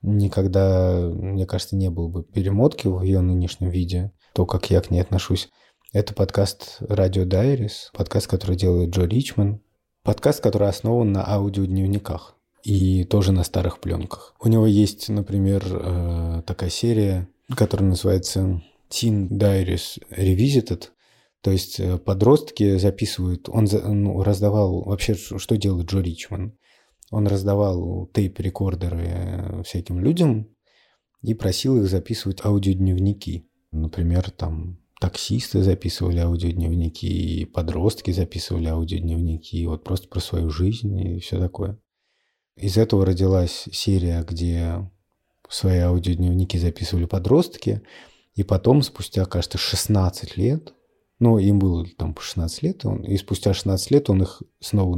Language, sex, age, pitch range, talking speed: Russian, male, 20-39, 90-105 Hz, 125 wpm